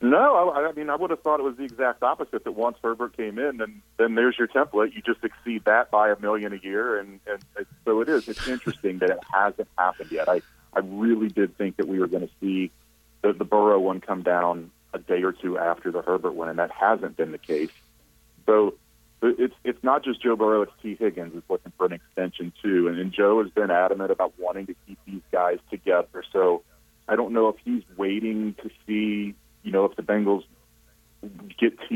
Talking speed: 230 wpm